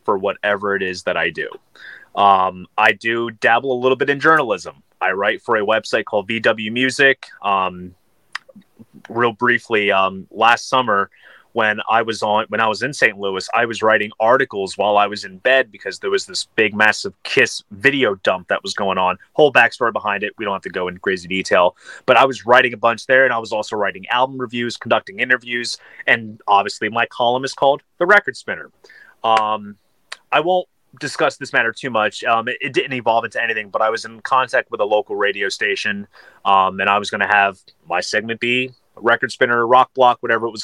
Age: 30-49